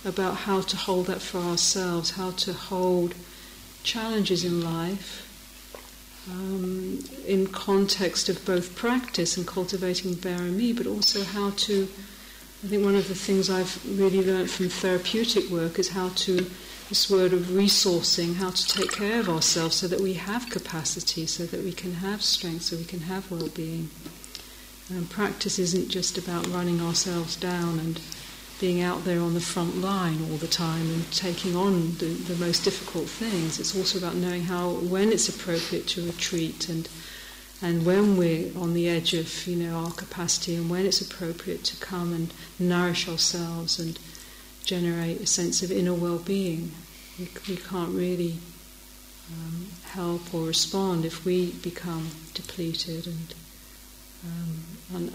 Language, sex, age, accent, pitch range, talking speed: English, female, 50-69, British, 170-190 Hz, 160 wpm